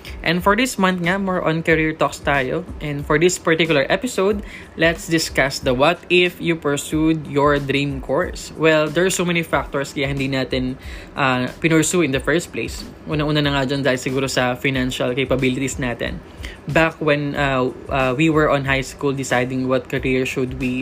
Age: 20-39